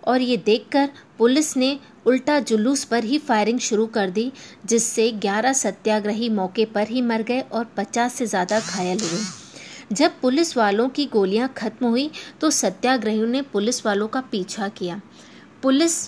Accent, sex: native, female